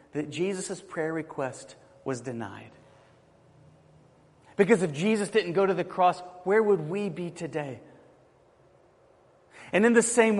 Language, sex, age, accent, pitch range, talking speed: English, male, 40-59, American, 155-215 Hz, 135 wpm